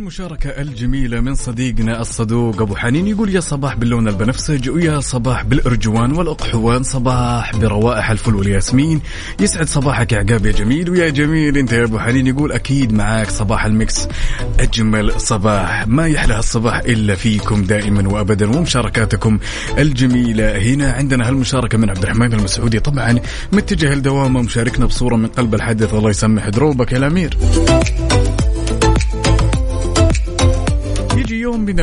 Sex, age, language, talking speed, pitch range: male, 30-49, Arabic, 130 wpm, 110-145 Hz